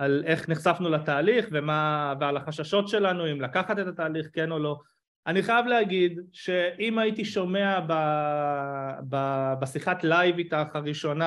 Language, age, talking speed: Hebrew, 30-49, 145 wpm